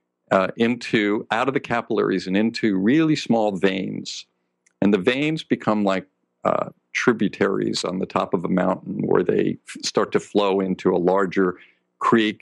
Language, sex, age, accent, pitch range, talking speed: English, male, 50-69, American, 90-110 Hz, 165 wpm